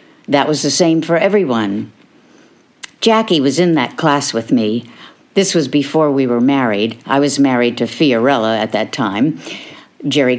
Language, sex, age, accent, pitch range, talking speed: English, female, 60-79, American, 130-200 Hz, 160 wpm